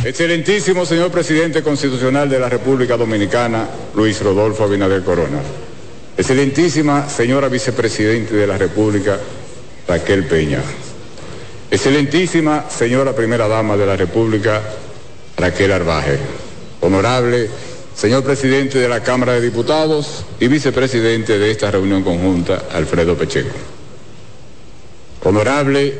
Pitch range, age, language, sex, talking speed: 105-135 Hz, 60-79, Spanish, male, 105 wpm